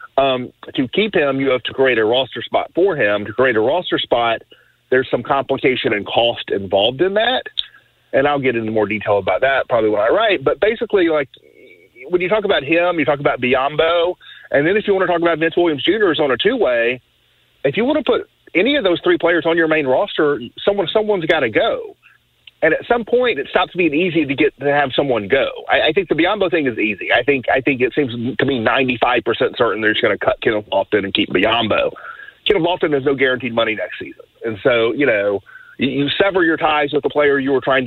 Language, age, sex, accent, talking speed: English, 40-59, male, American, 240 wpm